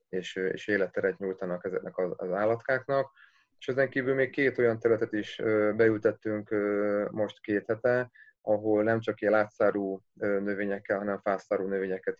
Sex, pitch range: male, 100-115 Hz